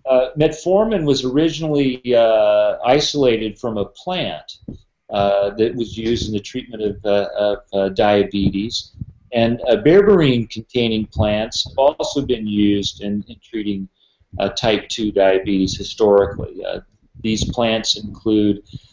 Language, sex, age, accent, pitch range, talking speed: English, male, 40-59, American, 105-130 Hz, 135 wpm